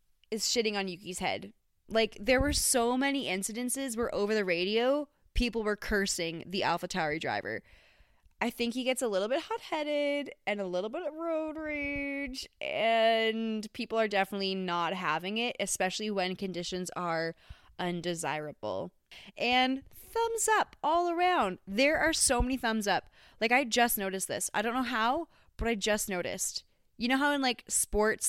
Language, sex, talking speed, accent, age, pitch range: English, female, 165 wpm, American, 20-39, 185-255 Hz